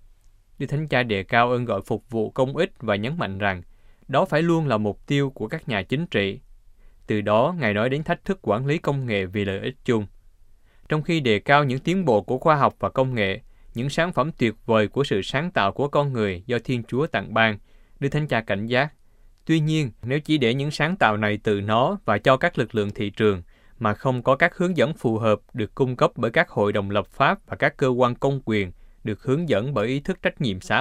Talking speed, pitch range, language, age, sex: 245 wpm, 105-140 Hz, Vietnamese, 20-39, male